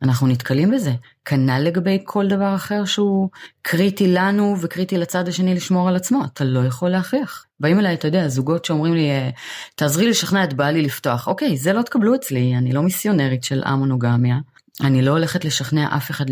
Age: 30-49